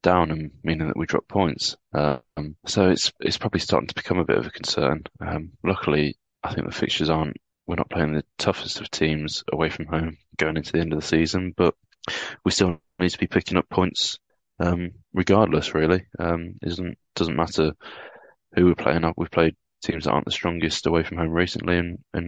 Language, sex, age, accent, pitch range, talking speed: English, male, 20-39, British, 80-90 Hz, 205 wpm